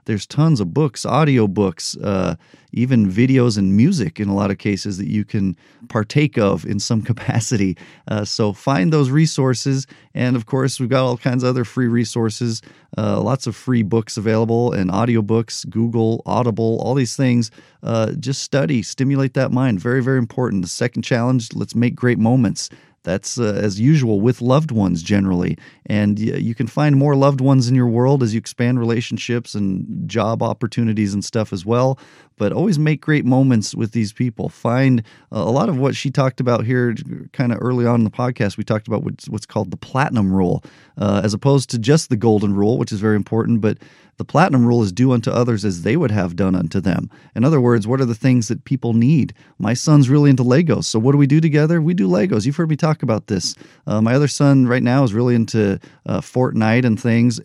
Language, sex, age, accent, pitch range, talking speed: English, male, 40-59, American, 110-135 Hz, 210 wpm